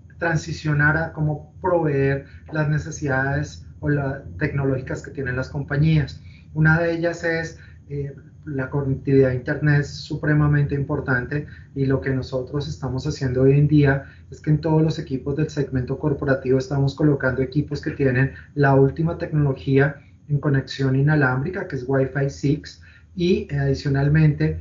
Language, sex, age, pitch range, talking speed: Spanish, male, 30-49, 130-145 Hz, 150 wpm